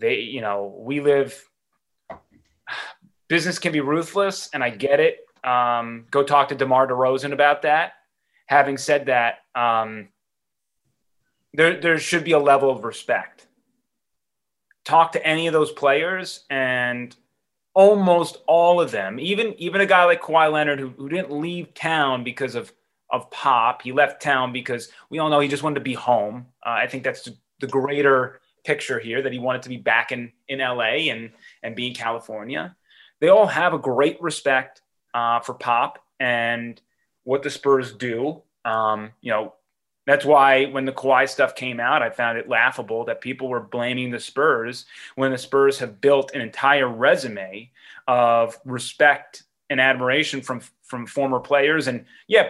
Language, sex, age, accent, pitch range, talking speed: English, male, 30-49, American, 125-150 Hz, 175 wpm